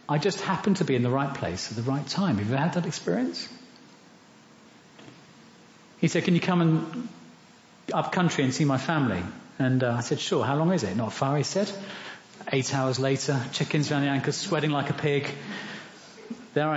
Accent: British